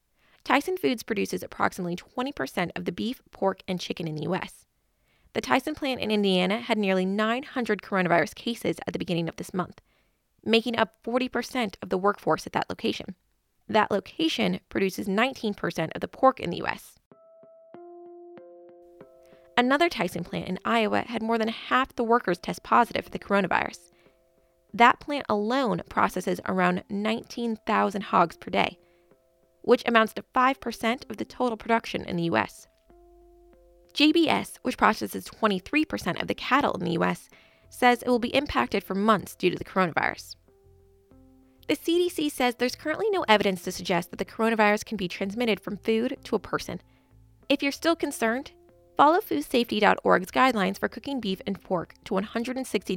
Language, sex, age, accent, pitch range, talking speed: English, female, 20-39, American, 180-250 Hz, 160 wpm